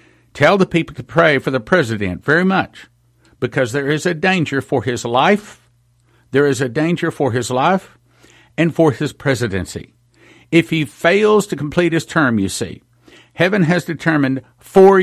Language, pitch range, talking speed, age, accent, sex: English, 125-160 Hz, 170 wpm, 50-69, American, male